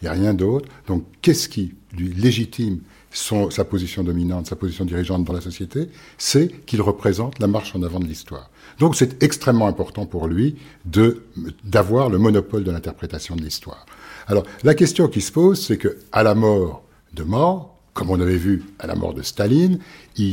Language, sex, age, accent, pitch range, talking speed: French, male, 60-79, French, 95-135 Hz, 190 wpm